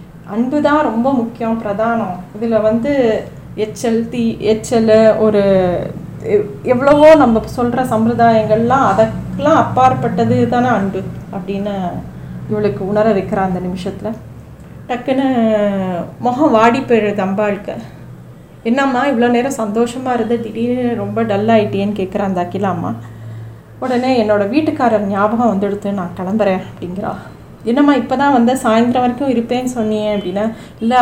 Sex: female